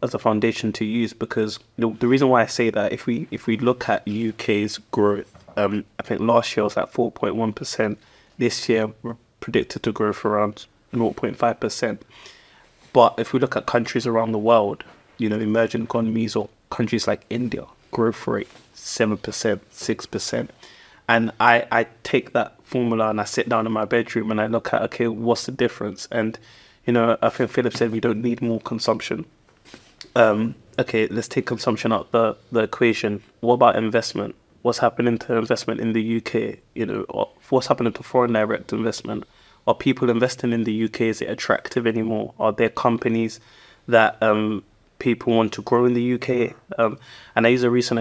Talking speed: 185 wpm